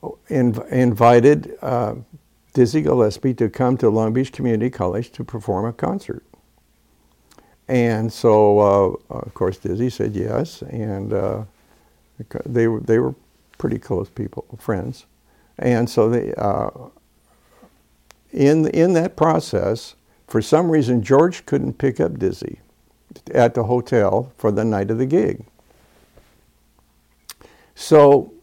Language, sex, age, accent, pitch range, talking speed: English, male, 60-79, American, 110-135 Hz, 125 wpm